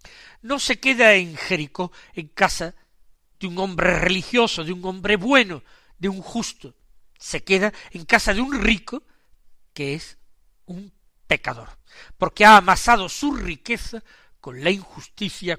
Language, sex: Spanish, male